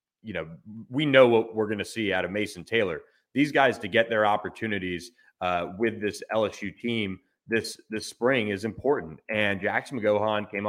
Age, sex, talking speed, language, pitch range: 30-49, male, 185 wpm, English, 95-110 Hz